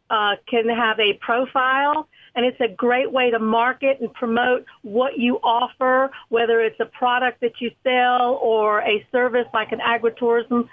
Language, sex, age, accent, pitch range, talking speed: English, female, 50-69, American, 225-250 Hz, 170 wpm